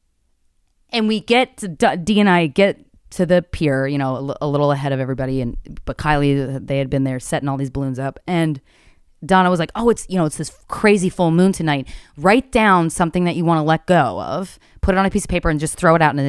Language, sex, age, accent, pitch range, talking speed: English, female, 20-39, American, 155-225 Hz, 260 wpm